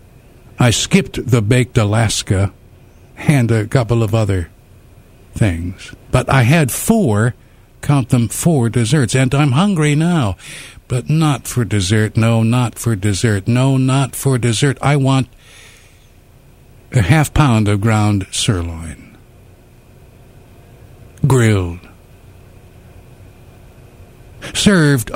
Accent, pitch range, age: American, 105-130 Hz, 60-79